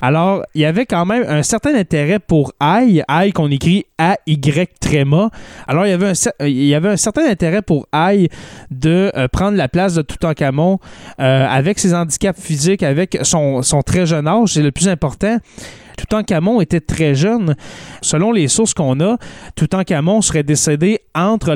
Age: 20-39